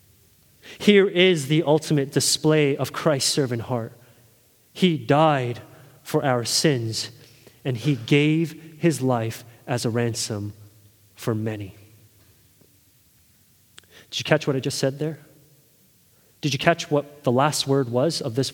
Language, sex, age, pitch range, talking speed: English, male, 30-49, 120-170 Hz, 135 wpm